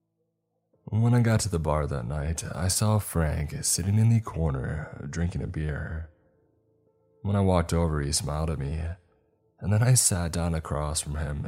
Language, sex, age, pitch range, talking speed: English, male, 20-39, 75-100 Hz, 180 wpm